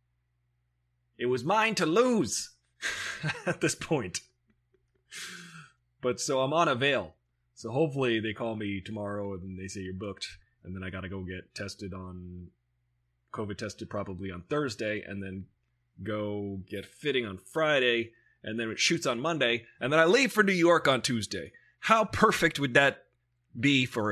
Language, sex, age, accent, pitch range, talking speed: English, male, 30-49, American, 95-125 Hz, 165 wpm